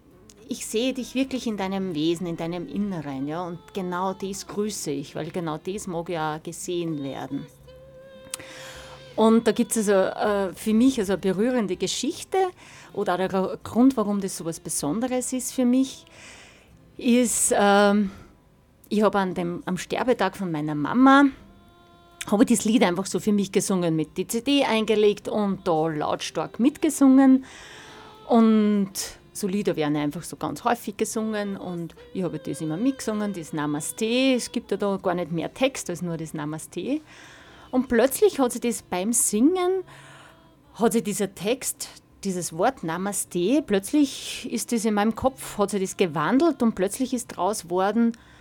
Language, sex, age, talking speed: German, female, 30-49, 160 wpm